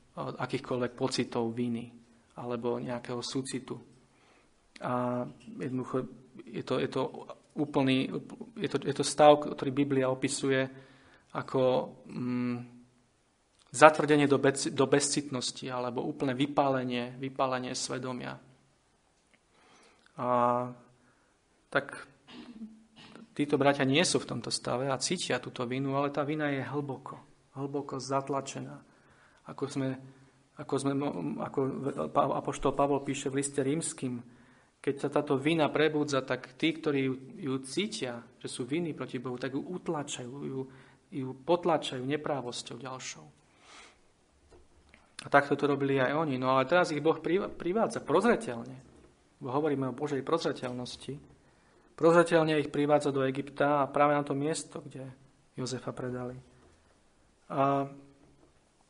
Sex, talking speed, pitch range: male, 115 wpm, 125-145 Hz